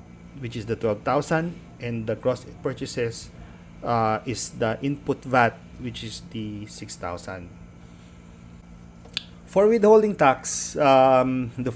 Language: English